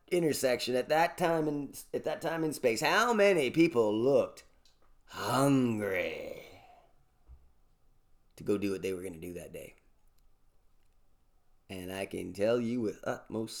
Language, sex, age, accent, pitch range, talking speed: English, male, 30-49, American, 120-165 Hz, 145 wpm